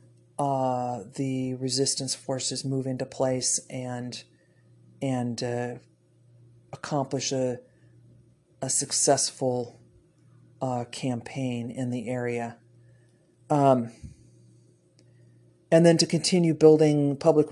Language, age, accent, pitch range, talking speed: English, 40-59, American, 120-140 Hz, 90 wpm